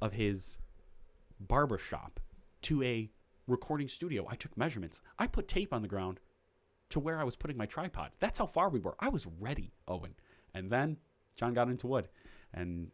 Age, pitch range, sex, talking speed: 20-39, 90-115 Hz, male, 185 wpm